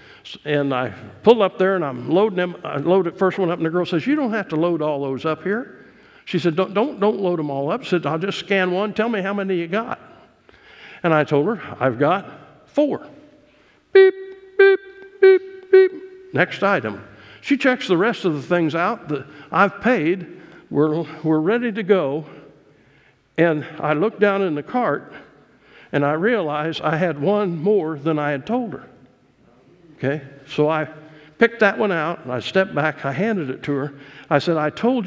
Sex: male